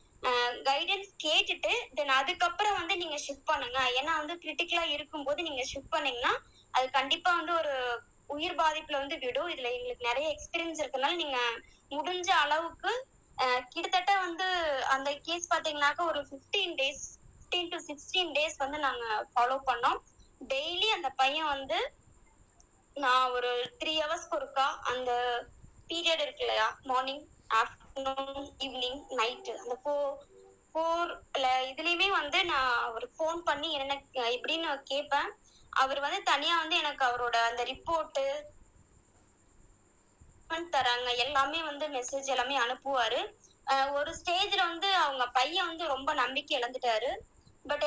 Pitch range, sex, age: 255-330 Hz, male, 20-39